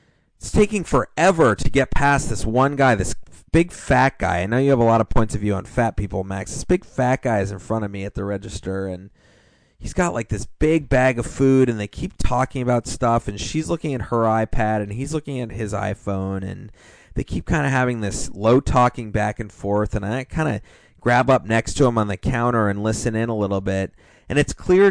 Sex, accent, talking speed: male, American, 240 wpm